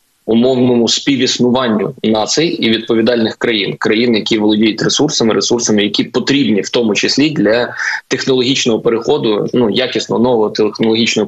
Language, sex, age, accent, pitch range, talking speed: Ukrainian, male, 20-39, native, 110-125 Hz, 120 wpm